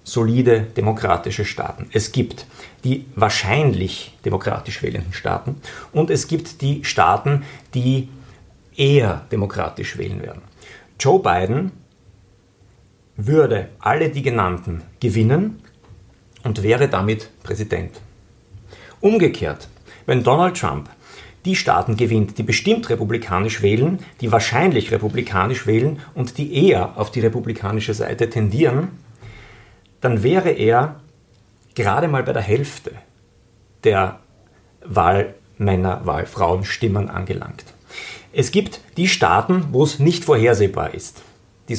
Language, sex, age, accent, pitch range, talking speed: German, male, 50-69, German, 105-140 Hz, 110 wpm